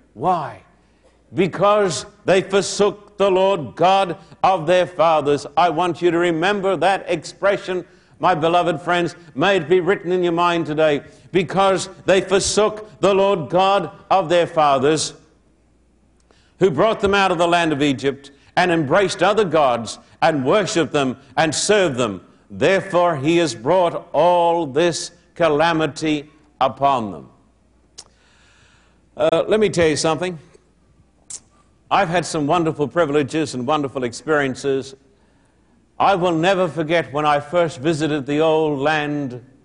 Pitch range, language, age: 145-185 Hz, English, 60-79